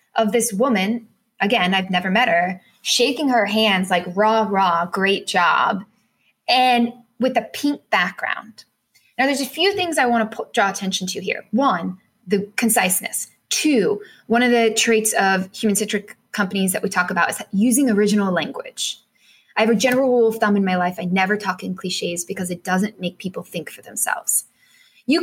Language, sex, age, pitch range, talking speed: English, female, 10-29, 195-240 Hz, 190 wpm